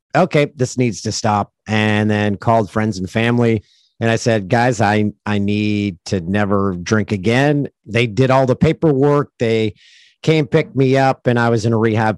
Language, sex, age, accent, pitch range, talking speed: English, male, 40-59, American, 110-135 Hz, 185 wpm